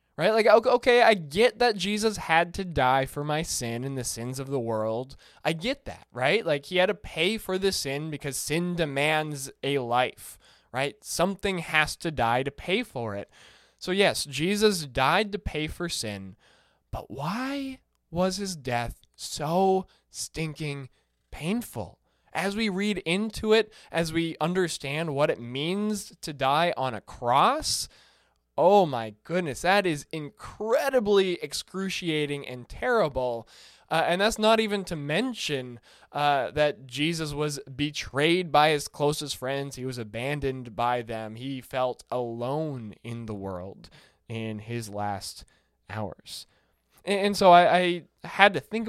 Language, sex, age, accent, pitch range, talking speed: English, male, 20-39, American, 125-185 Hz, 150 wpm